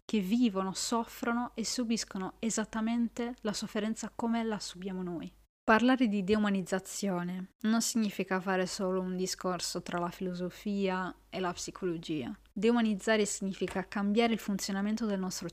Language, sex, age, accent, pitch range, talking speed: Italian, female, 20-39, native, 190-225 Hz, 130 wpm